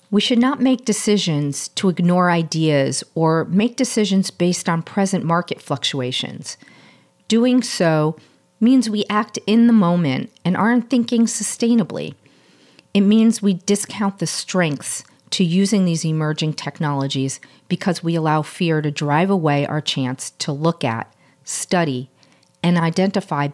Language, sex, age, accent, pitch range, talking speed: English, female, 50-69, American, 150-200 Hz, 140 wpm